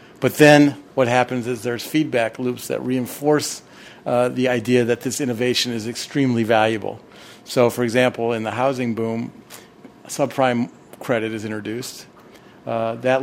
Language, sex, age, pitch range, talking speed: English, male, 50-69, 120-145 Hz, 145 wpm